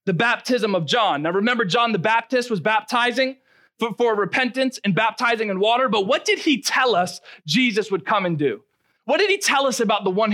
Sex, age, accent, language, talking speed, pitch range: male, 20-39, American, English, 215 wpm, 185-255 Hz